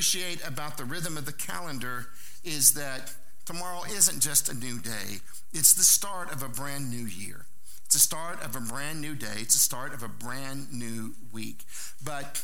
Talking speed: 190 wpm